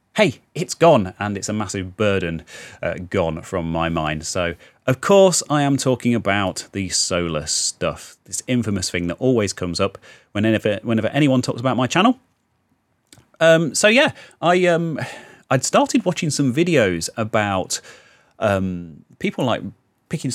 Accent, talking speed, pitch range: British, 155 wpm, 95-135 Hz